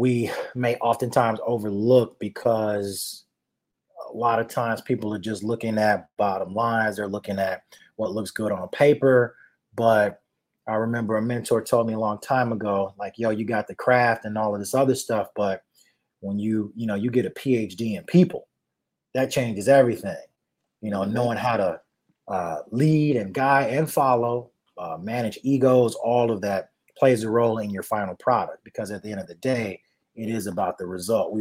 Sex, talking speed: male, 190 wpm